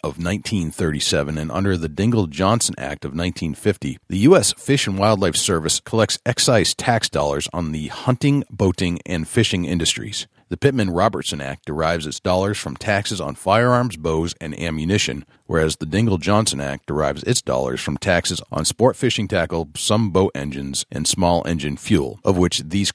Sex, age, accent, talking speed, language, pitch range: male, 40-59, American, 170 wpm, English, 80-105 Hz